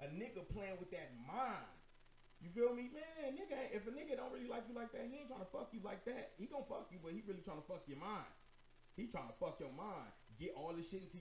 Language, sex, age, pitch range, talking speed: English, male, 30-49, 180-230 Hz, 275 wpm